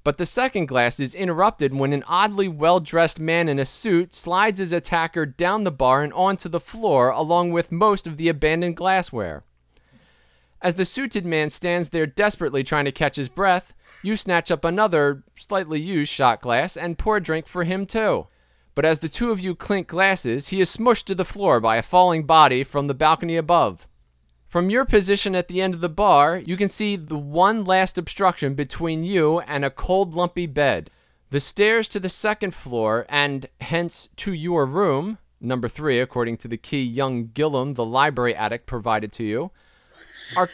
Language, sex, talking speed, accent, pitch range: English, male, 190 wpm, American, 140-195 Hz